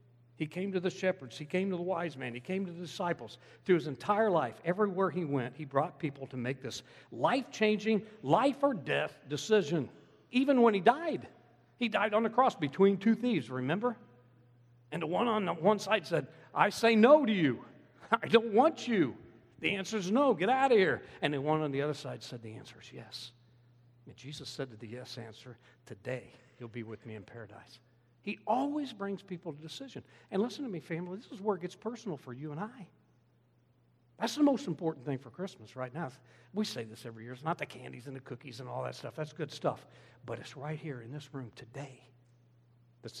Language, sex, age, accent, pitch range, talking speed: English, male, 60-79, American, 120-180 Hz, 215 wpm